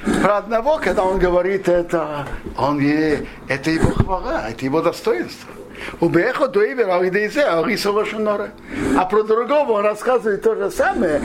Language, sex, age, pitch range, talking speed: Russian, male, 60-79, 140-195 Hz, 170 wpm